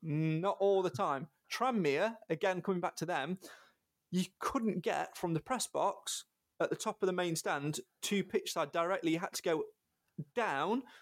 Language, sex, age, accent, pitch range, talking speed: English, male, 30-49, British, 150-215 Hz, 180 wpm